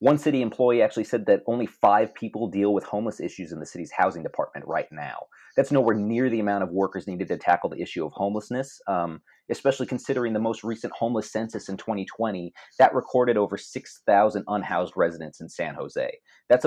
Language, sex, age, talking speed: English, male, 30-49, 195 wpm